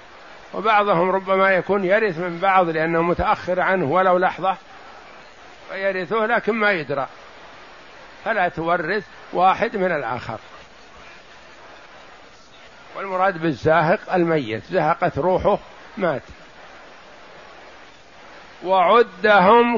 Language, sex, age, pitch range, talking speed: Arabic, male, 60-79, 180-215 Hz, 80 wpm